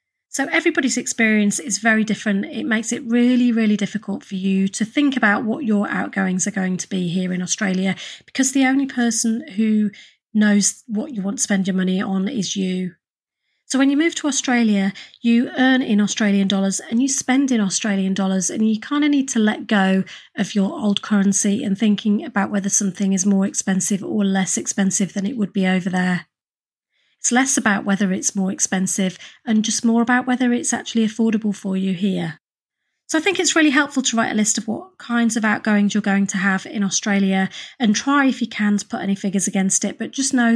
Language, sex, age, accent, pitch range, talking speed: English, female, 30-49, British, 195-240 Hz, 210 wpm